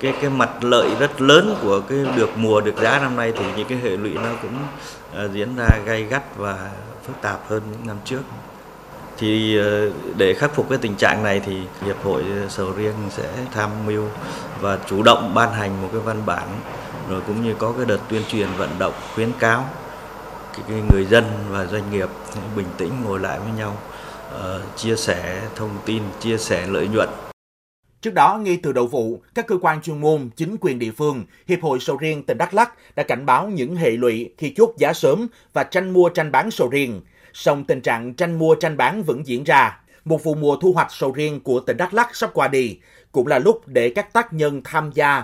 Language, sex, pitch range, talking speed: Vietnamese, male, 105-150 Hz, 215 wpm